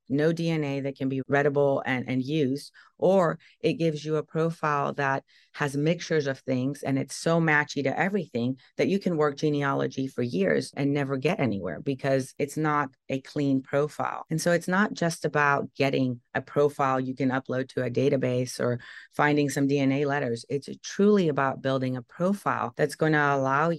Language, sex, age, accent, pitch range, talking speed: English, female, 30-49, American, 130-150 Hz, 185 wpm